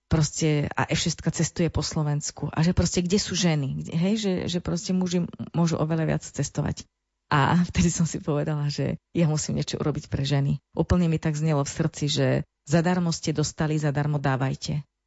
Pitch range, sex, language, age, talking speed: 145-170 Hz, female, Slovak, 30-49, 185 wpm